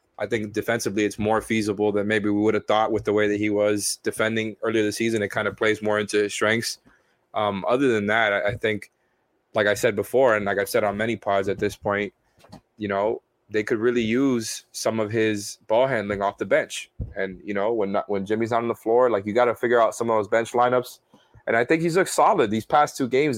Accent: American